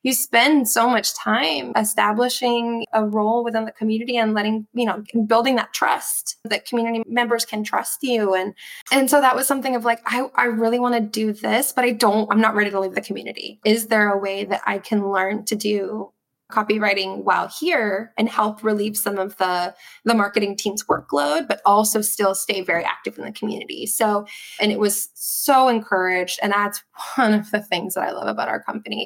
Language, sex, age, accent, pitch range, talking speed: English, female, 20-39, American, 200-235 Hz, 205 wpm